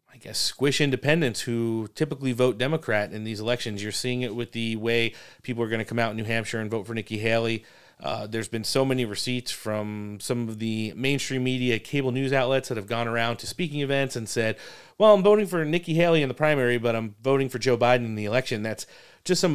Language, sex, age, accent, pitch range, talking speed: English, male, 30-49, American, 110-140 Hz, 235 wpm